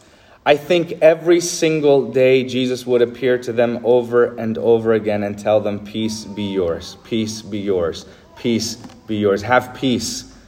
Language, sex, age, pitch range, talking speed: English, male, 30-49, 115-165 Hz, 160 wpm